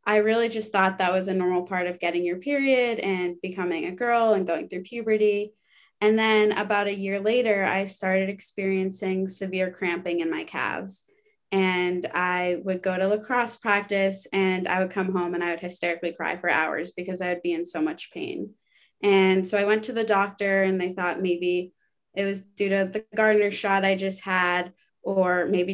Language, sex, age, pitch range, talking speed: English, female, 20-39, 180-210 Hz, 200 wpm